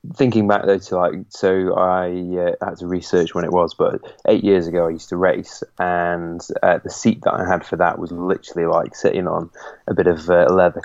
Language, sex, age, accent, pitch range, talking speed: English, male, 20-39, British, 90-105 Hz, 225 wpm